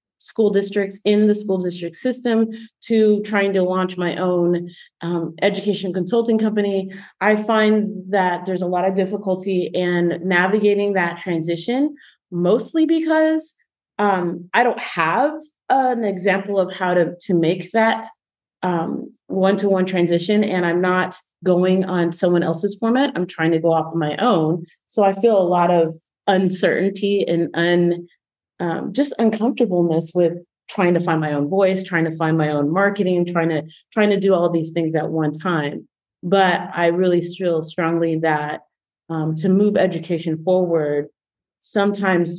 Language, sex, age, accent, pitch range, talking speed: English, female, 30-49, American, 165-200 Hz, 155 wpm